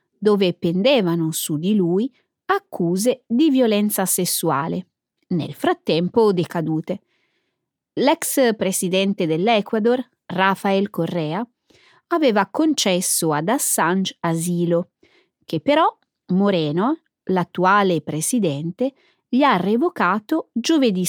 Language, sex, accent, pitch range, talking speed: Italian, female, native, 175-255 Hz, 90 wpm